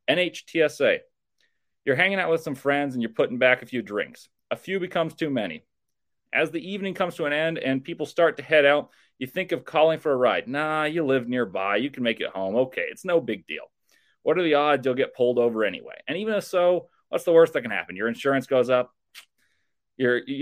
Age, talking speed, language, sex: 30-49, 225 wpm, English, male